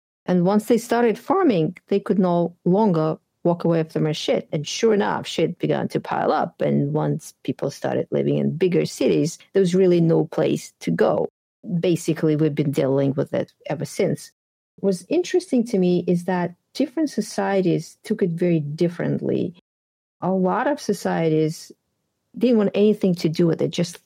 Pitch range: 165-215 Hz